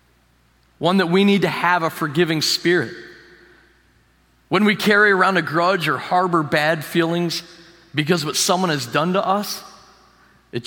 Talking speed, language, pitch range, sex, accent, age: 155 wpm, English, 105-165 Hz, male, American, 40-59